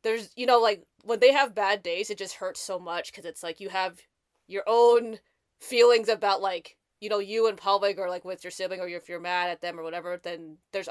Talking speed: 240 wpm